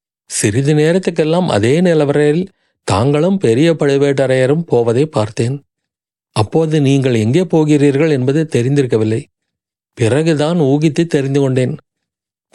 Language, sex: Tamil, male